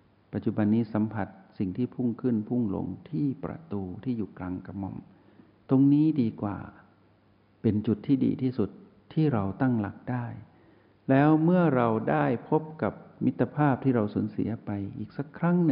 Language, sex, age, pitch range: Thai, male, 60-79, 100-130 Hz